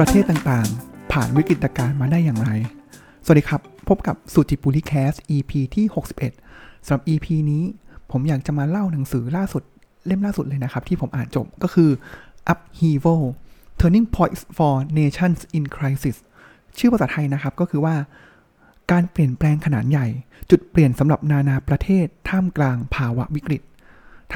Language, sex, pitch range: Thai, male, 135-175 Hz